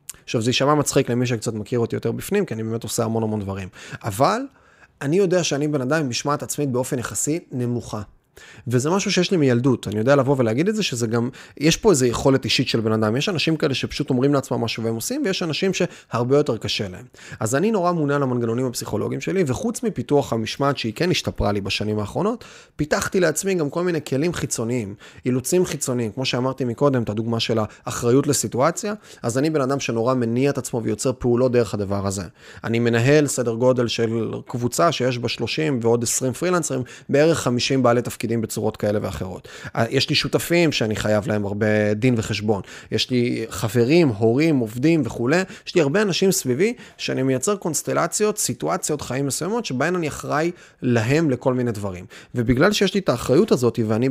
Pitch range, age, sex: 115-150 Hz, 30-49, male